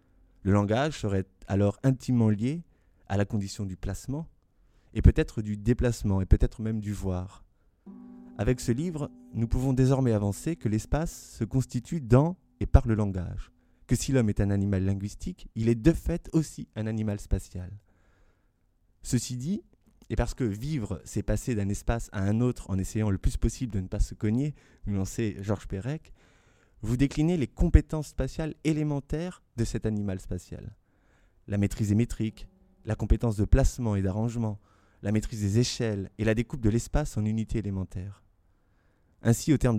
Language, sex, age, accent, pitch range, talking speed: French, male, 20-39, French, 100-125 Hz, 170 wpm